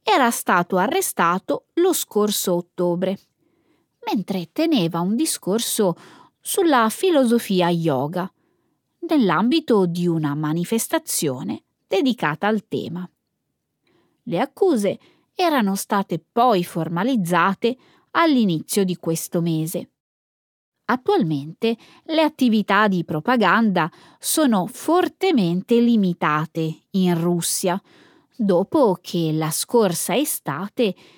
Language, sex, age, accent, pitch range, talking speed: Italian, female, 20-39, native, 175-265 Hz, 85 wpm